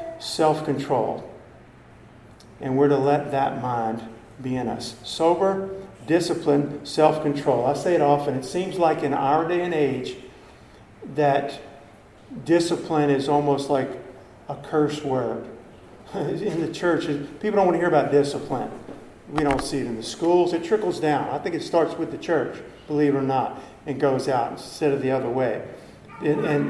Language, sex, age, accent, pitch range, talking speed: English, male, 50-69, American, 140-165 Hz, 165 wpm